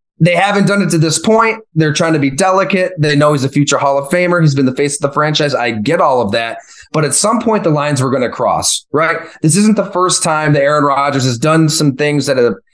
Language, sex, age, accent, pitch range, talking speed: English, male, 30-49, American, 135-175 Hz, 270 wpm